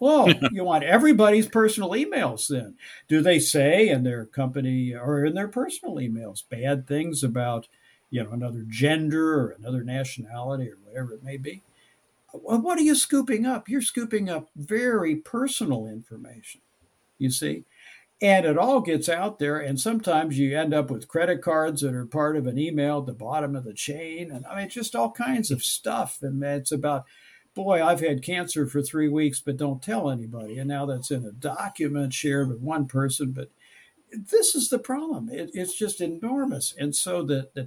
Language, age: English, 60-79